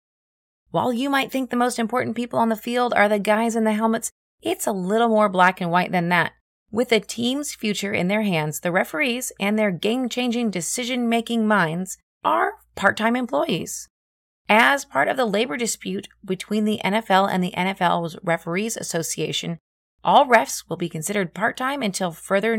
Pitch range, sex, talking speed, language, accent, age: 175-240 Hz, female, 175 wpm, English, American, 30-49